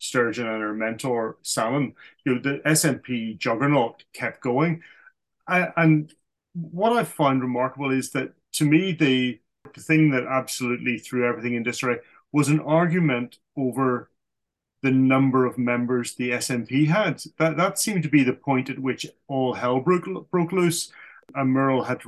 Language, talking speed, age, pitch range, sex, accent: English, 165 wpm, 30-49, 125-155 Hz, male, British